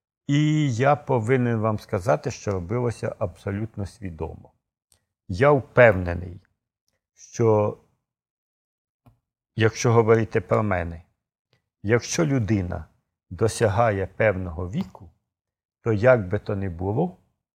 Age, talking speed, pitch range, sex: 60-79, 90 wpm, 100-120 Hz, male